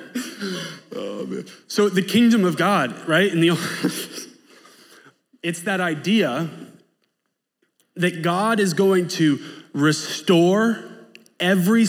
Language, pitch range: English, 170-225 Hz